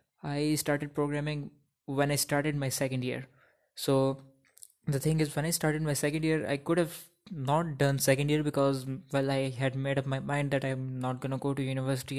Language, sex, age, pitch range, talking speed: Urdu, male, 20-39, 130-145 Hz, 205 wpm